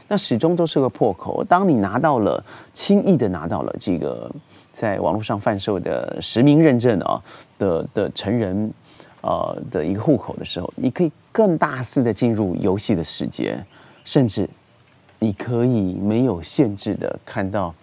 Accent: native